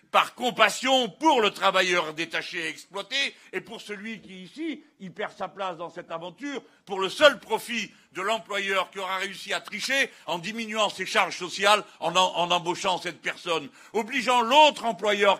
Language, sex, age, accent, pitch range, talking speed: French, male, 60-79, French, 190-230 Hz, 175 wpm